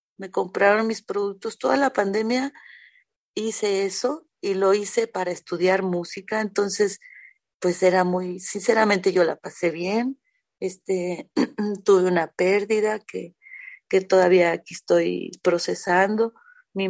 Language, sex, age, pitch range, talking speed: Spanish, female, 40-59, 180-210 Hz, 125 wpm